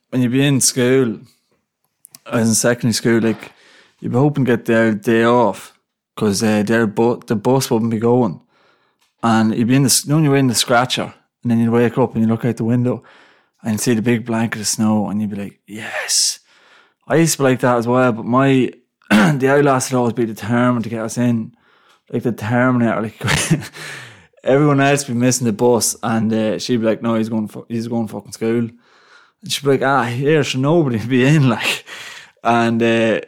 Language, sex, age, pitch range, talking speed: English, male, 20-39, 110-125 Hz, 215 wpm